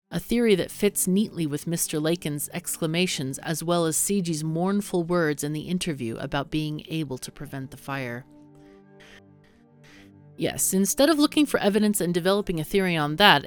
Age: 40-59